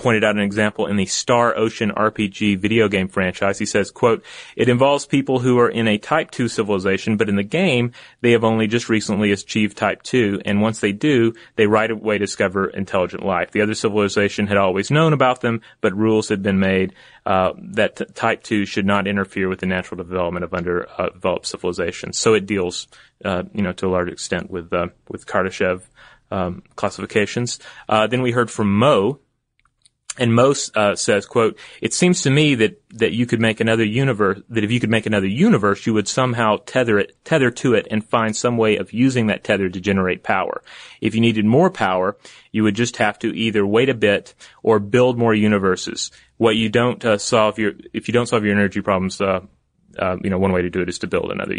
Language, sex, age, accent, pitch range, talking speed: English, male, 30-49, American, 100-115 Hz, 215 wpm